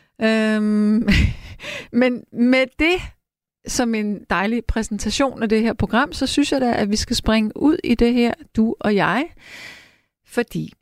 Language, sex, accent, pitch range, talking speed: Danish, female, native, 175-235 Hz, 150 wpm